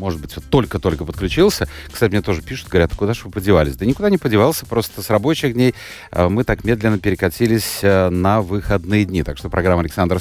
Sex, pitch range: male, 85-120 Hz